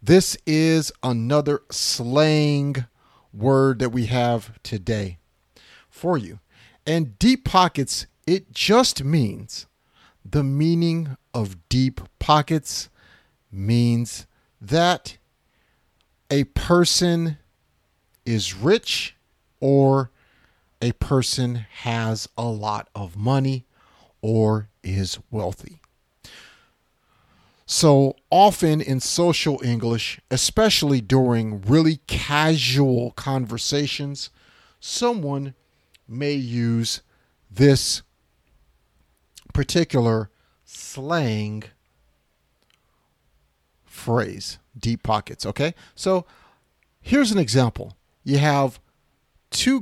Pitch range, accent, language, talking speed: 105-145 Hz, American, English, 80 wpm